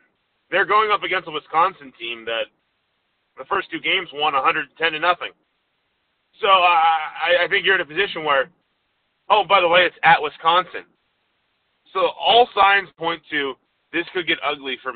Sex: male